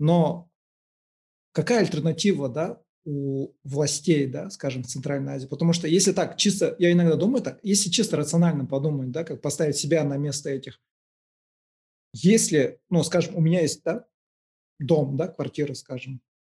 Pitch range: 140-175 Hz